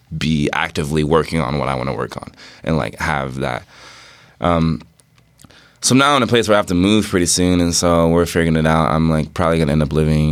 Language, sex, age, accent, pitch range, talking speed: English, male, 20-39, American, 80-95 Hz, 245 wpm